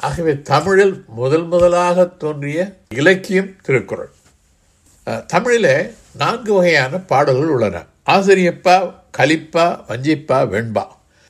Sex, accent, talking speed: male, native, 85 wpm